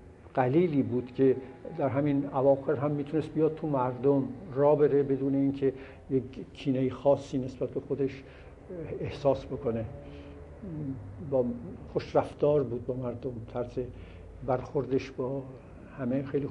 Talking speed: 110 wpm